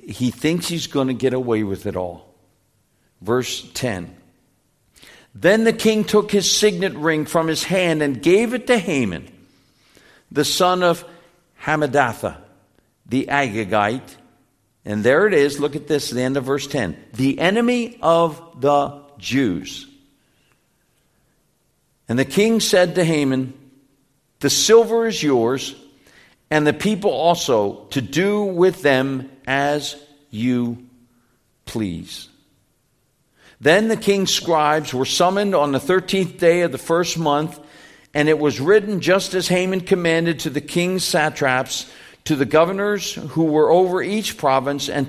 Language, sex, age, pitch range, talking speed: English, male, 60-79, 135-180 Hz, 140 wpm